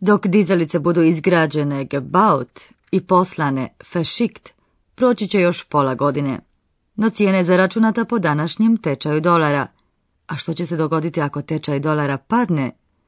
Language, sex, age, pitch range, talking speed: Croatian, female, 30-49, 150-205 Hz, 140 wpm